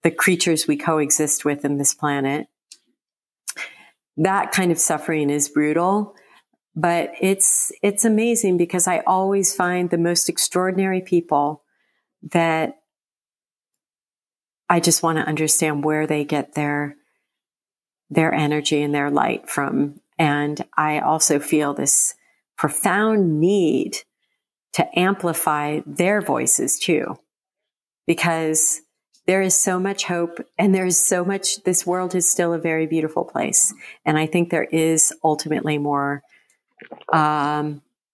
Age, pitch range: 50-69, 155-190 Hz